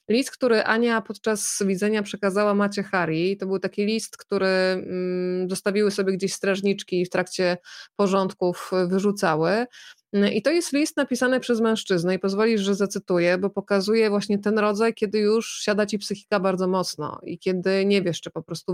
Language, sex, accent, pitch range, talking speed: Polish, female, native, 185-210 Hz, 165 wpm